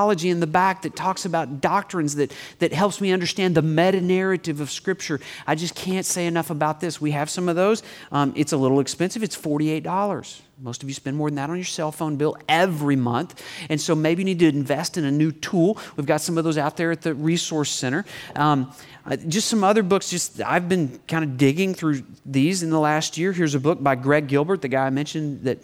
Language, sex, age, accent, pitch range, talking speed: English, male, 40-59, American, 145-190 Hz, 235 wpm